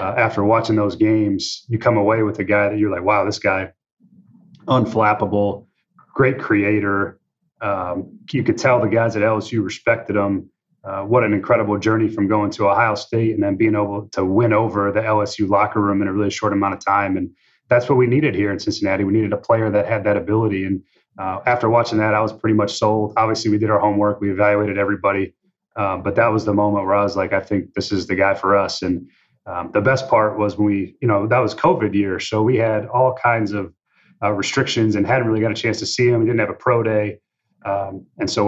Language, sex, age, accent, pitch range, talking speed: English, male, 30-49, American, 100-110 Hz, 235 wpm